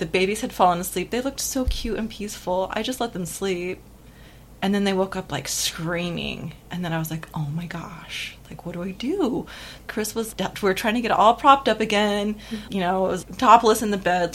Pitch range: 175-230 Hz